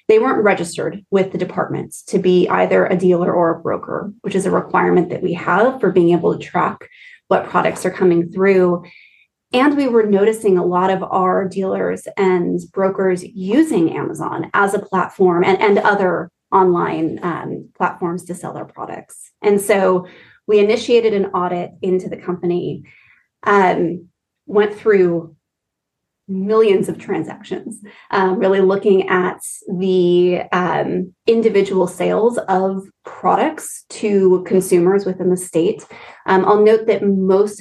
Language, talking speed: English, 145 wpm